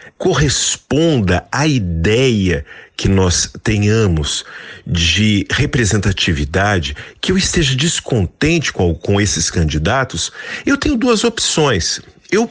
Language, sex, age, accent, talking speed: Portuguese, male, 50-69, Brazilian, 95 wpm